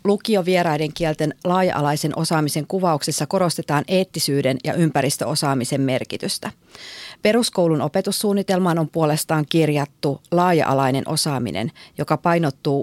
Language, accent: Finnish, native